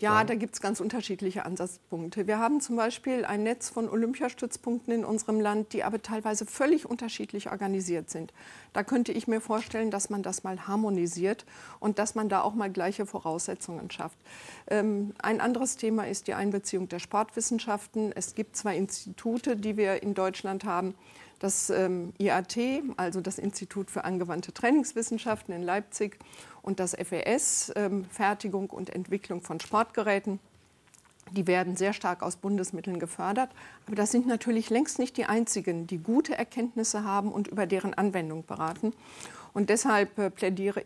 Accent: German